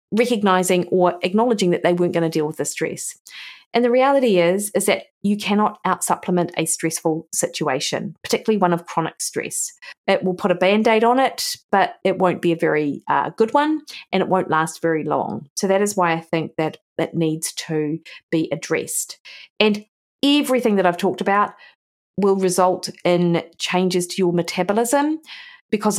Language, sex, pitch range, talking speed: English, female, 175-210 Hz, 180 wpm